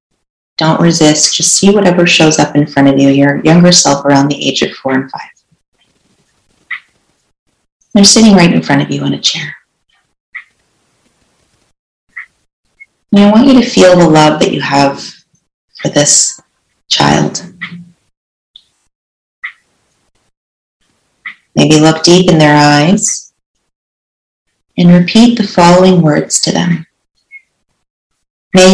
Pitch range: 135-175 Hz